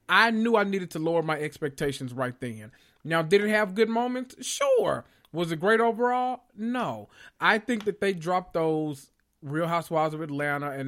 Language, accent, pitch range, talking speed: English, American, 140-185 Hz, 180 wpm